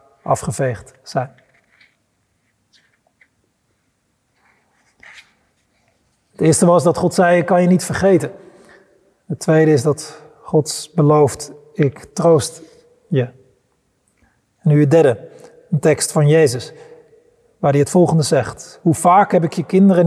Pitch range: 145-180 Hz